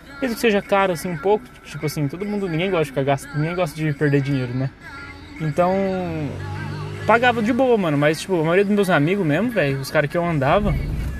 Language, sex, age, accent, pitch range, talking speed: Portuguese, male, 20-39, Brazilian, 140-180 Hz, 215 wpm